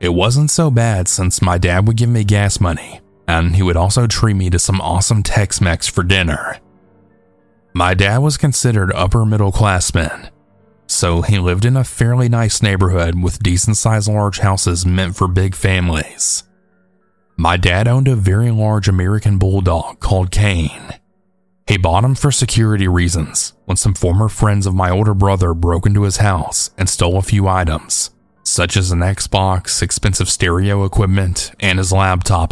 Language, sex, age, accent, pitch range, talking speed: English, male, 20-39, American, 90-105 Hz, 170 wpm